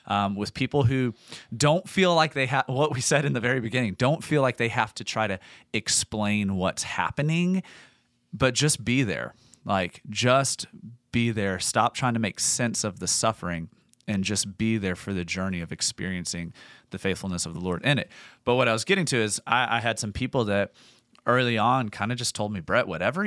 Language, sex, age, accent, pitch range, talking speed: English, male, 30-49, American, 100-130 Hz, 205 wpm